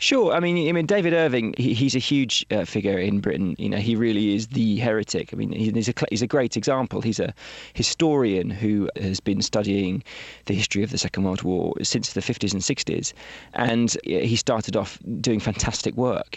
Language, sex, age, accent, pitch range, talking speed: English, male, 20-39, British, 100-120 Hz, 205 wpm